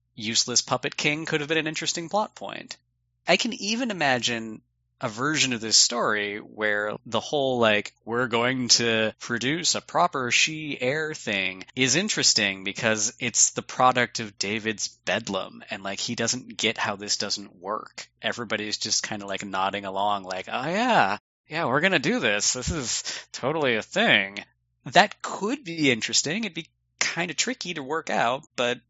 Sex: male